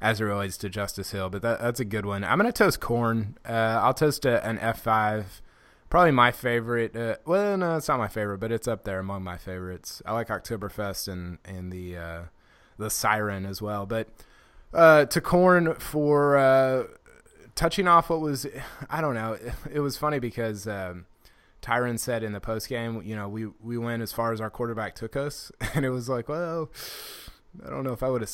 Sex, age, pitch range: male, 20-39, 105-130 Hz